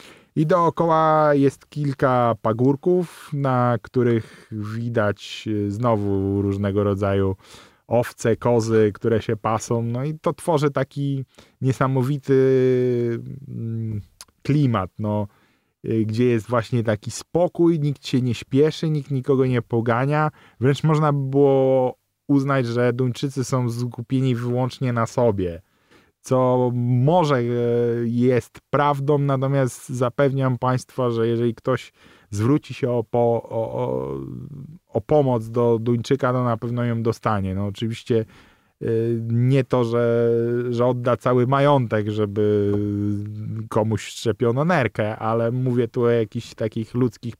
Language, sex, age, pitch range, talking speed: Polish, male, 20-39, 115-135 Hz, 110 wpm